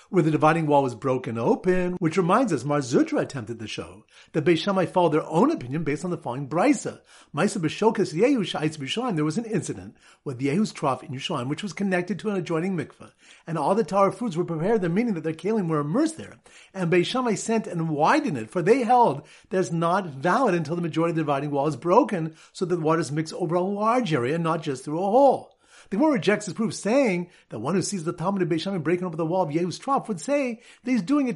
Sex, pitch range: male, 155-215 Hz